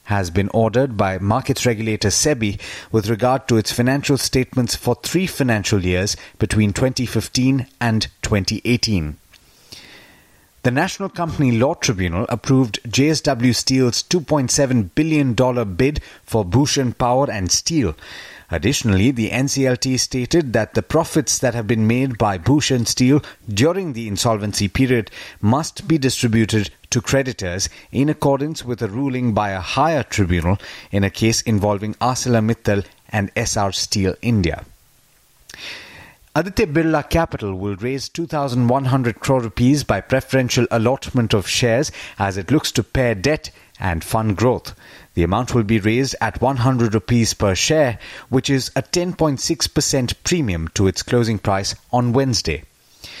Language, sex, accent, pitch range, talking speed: English, male, Indian, 105-135 Hz, 140 wpm